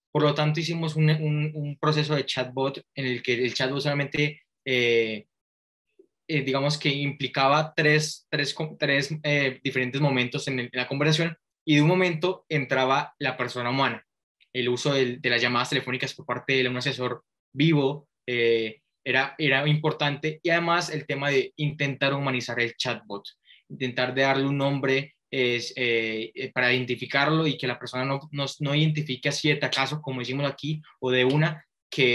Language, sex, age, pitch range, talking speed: Spanish, male, 20-39, 125-150 Hz, 175 wpm